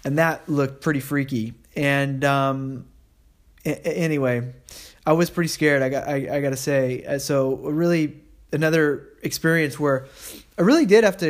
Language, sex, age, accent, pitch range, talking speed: English, male, 20-39, American, 140-180 Hz, 155 wpm